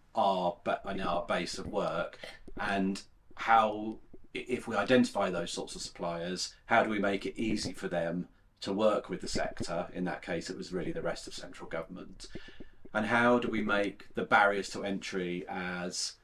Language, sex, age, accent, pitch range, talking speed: English, male, 40-59, British, 90-100 Hz, 175 wpm